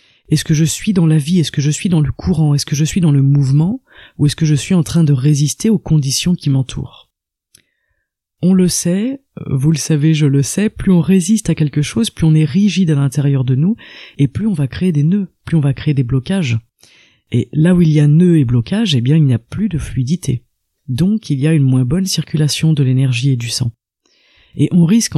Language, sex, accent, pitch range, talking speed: French, female, French, 135-175 Hz, 245 wpm